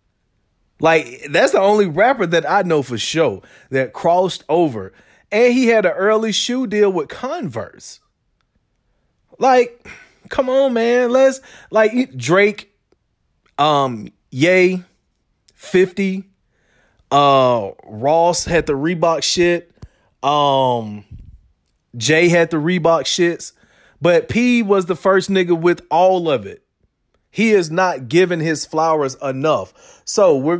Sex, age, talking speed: male, 30-49, 125 wpm